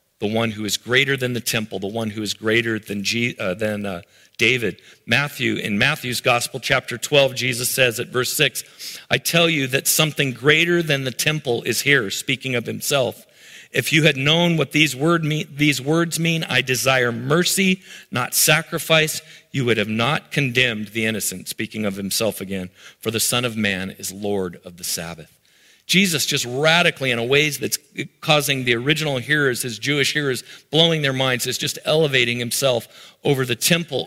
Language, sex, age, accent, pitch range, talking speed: English, male, 40-59, American, 120-155 Hz, 180 wpm